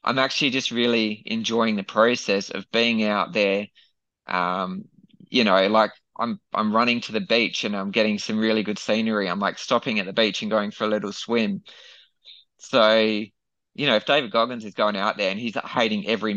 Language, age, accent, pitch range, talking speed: English, 20-39, Australian, 100-125 Hz, 200 wpm